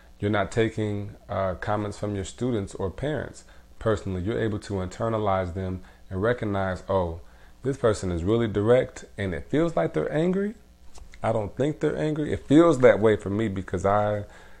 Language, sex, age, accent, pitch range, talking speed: English, male, 30-49, American, 90-115 Hz, 175 wpm